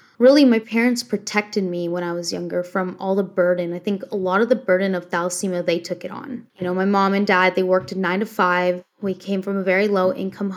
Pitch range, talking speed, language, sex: 185-220 Hz, 250 wpm, English, female